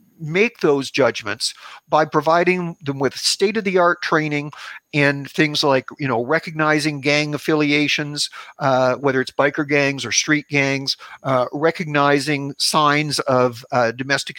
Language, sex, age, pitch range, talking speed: English, male, 50-69, 135-160 Hz, 140 wpm